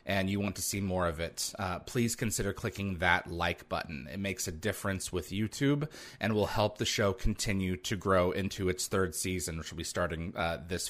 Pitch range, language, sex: 95-120 Hz, English, male